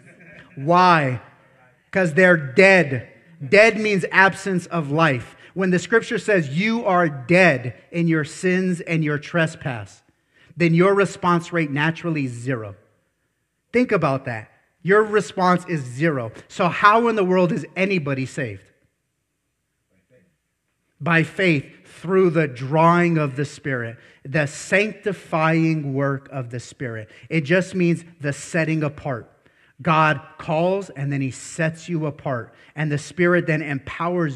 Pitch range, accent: 135-175 Hz, American